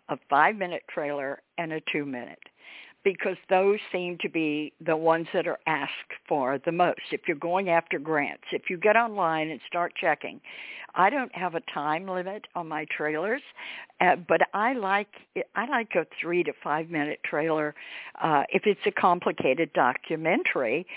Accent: American